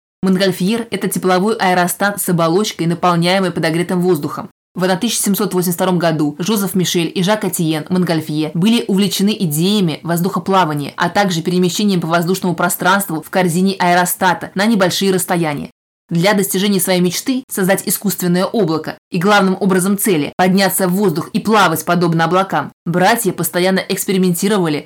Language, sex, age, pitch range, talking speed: Russian, female, 20-39, 175-195 Hz, 135 wpm